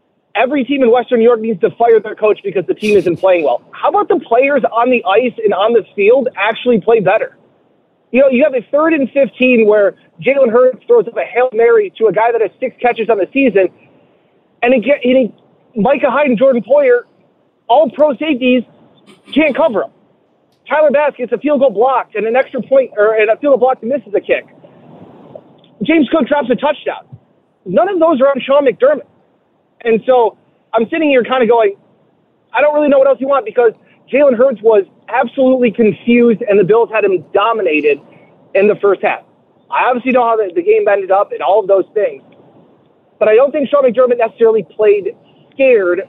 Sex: male